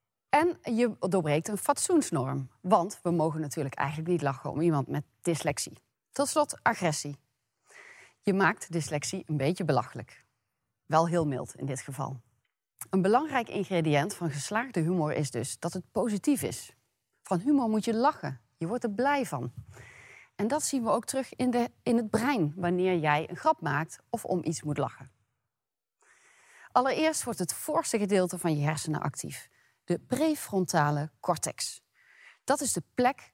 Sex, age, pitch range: female, 30-49, 145-225 Hz